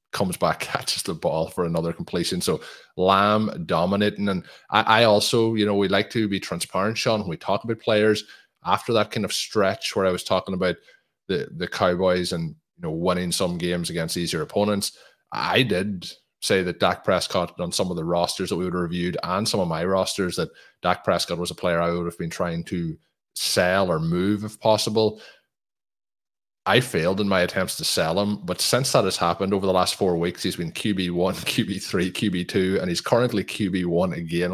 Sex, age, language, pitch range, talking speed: male, 20-39, English, 85-105 Hz, 200 wpm